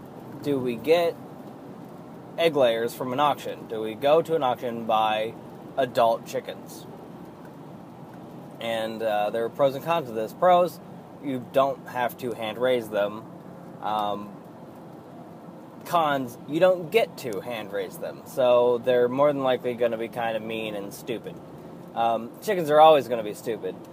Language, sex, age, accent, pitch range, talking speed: English, male, 20-39, American, 120-150 Hz, 160 wpm